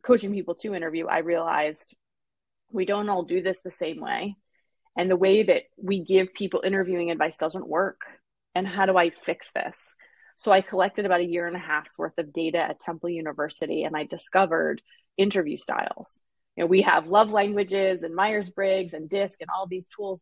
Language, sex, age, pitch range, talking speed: English, female, 20-39, 170-200 Hz, 195 wpm